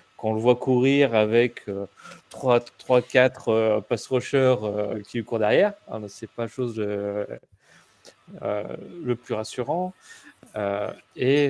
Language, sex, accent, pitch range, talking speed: French, male, French, 105-130 Hz, 130 wpm